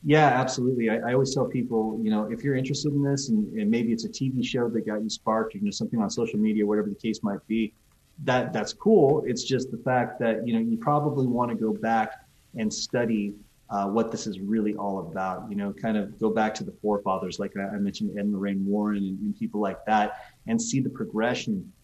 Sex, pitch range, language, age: male, 110-150 Hz, English, 30-49